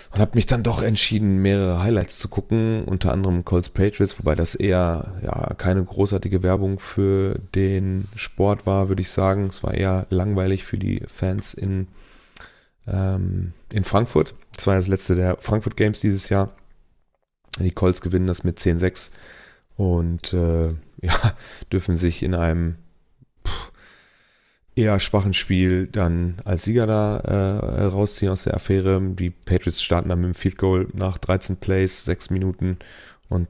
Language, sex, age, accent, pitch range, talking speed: German, male, 30-49, German, 90-100 Hz, 150 wpm